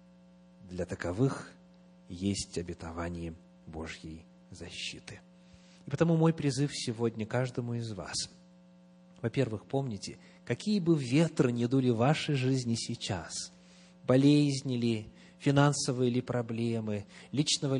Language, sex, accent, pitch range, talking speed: Russian, male, native, 110-180 Hz, 105 wpm